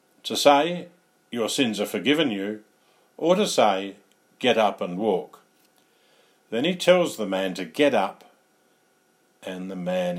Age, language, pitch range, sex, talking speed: 50-69, English, 95-120 Hz, male, 145 wpm